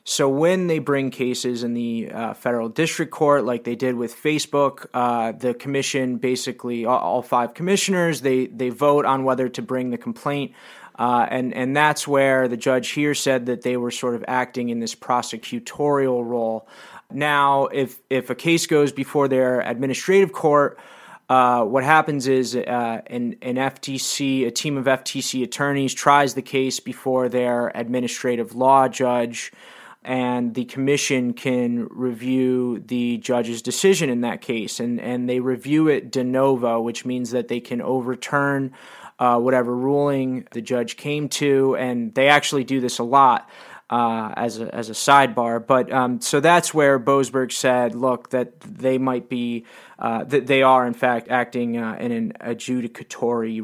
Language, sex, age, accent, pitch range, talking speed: English, male, 20-39, American, 120-140 Hz, 170 wpm